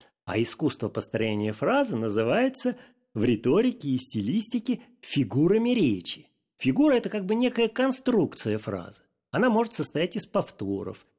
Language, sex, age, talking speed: Russian, male, 40-59, 130 wpm